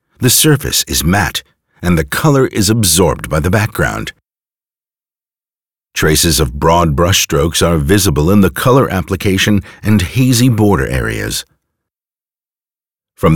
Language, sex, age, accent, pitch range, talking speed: English, male, 50-69, American, 80-125 Hz, 120 wpm